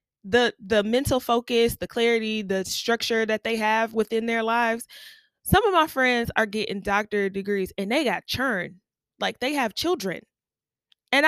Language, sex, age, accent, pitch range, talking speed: English, female, 20-39, American, 200-290 Hz, 165 wpm